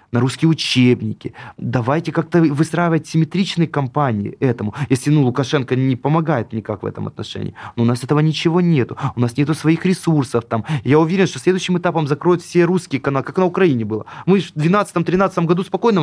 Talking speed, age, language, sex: 185 wpm, 20-39, Russian, male